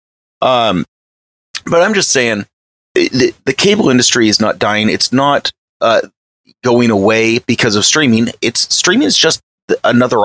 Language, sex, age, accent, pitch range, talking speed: English, male, 30-49, American, 95-125 Hz, 145 wpm